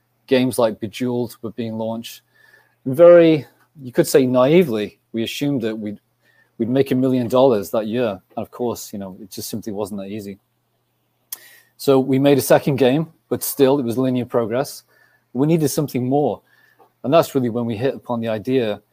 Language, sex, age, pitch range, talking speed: English, male, 30-49, 115-130 Hz, 185 wpm